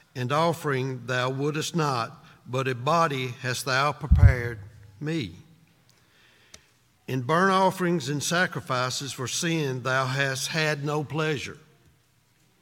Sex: male